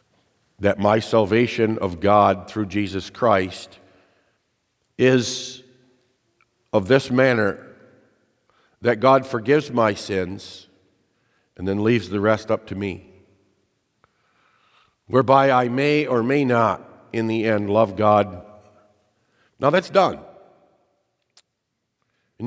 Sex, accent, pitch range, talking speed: male, American, 100-125 Hz, 105 wpm